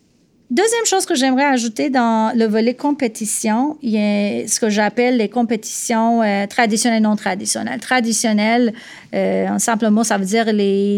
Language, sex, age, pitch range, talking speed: French, female, 30-49, 205-240 Hz, 170 wpm